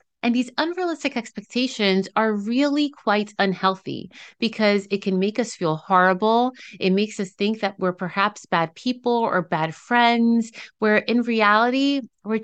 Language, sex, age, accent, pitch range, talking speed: English, female, 30-49, American, 195-250 Hz, 150 wpm